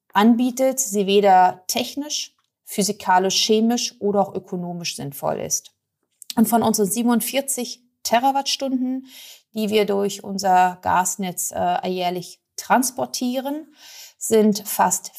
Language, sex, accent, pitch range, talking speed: German, female, German, 180-230 Hz, 105 wpm